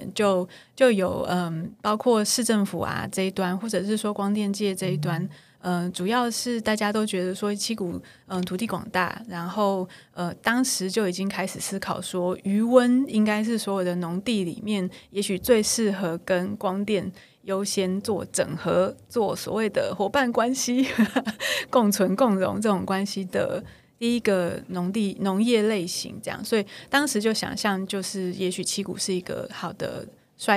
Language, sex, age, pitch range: Chinese, female, 20-39, 185-220 Hz